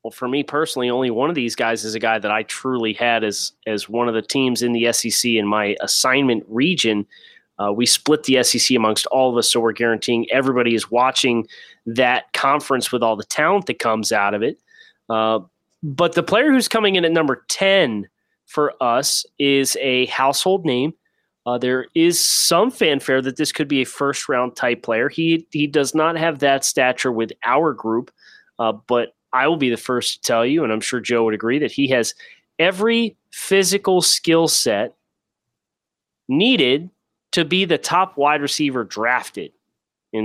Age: 30-49